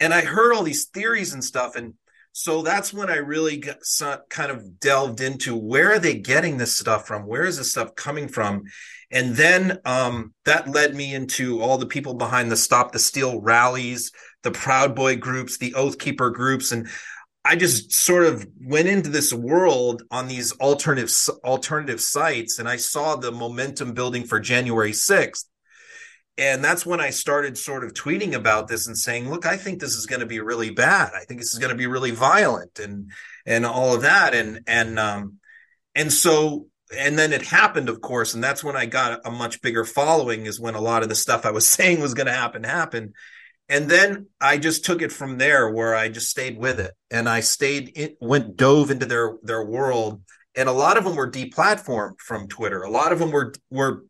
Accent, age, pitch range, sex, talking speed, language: American, 30-49, 115-150 Hz, male, 210 wpm, English